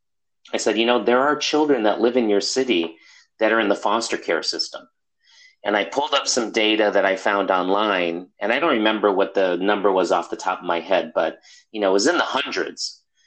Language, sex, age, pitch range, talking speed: English, male, 40-59, 100-130 Hz, 230 wpm